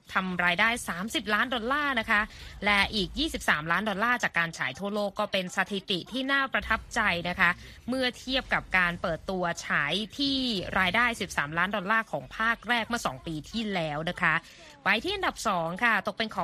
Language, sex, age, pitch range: Thai, female, 20-39, 175-230 Hz